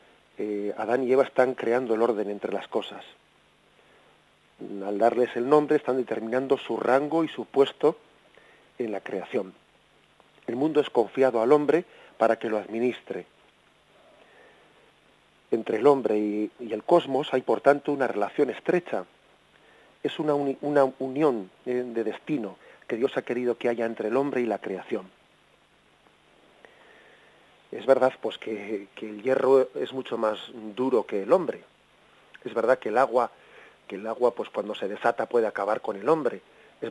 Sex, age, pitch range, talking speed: male, 40-59, 115-145 Hz, 160 wpm